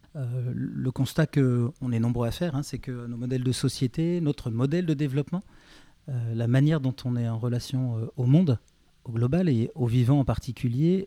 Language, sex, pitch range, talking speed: French, male, 120-145 Hz, 200 wpm